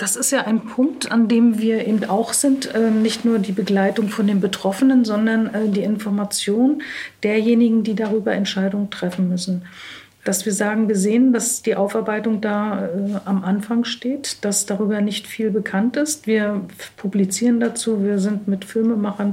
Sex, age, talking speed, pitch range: female, 50-69, 165 wpm, 195-230 Hz